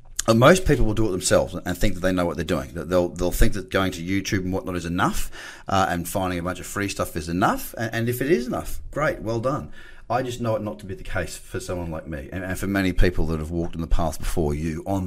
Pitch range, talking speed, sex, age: 85-110 Hz, 285 wpm, male, 30-49